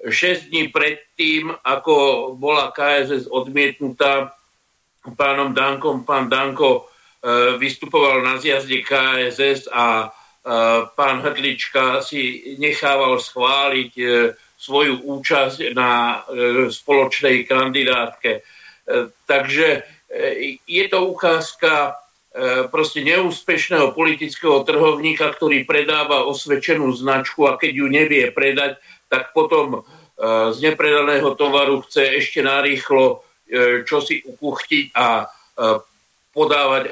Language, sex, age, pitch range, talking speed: Slovak, male, 60-79, 130-150 Hz, 90 wpm